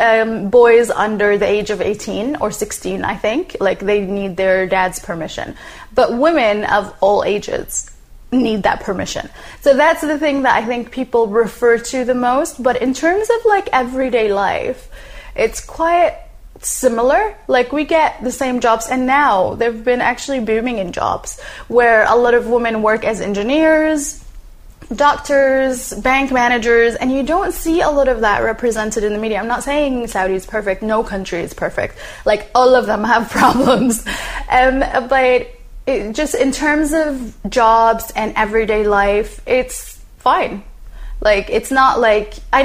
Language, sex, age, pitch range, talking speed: English, female, 20-39, 215-270 Hz, 165 wpm